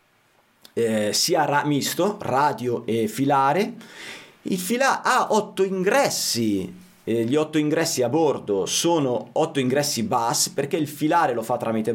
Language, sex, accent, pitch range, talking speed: Italian, male, native, 120-185 Hz, 145 wpm